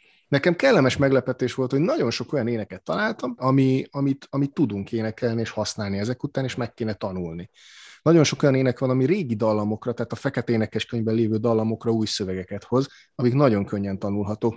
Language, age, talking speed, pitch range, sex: Hungarian, 30-49, 180 wpm, 105-125 Hz, male